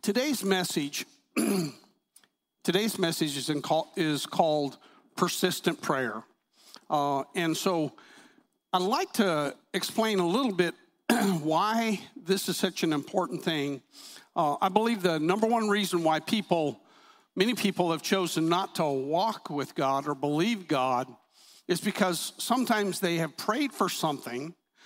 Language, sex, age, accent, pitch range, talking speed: English, male, 50-69, American, 160-200 Hz, 140 wpm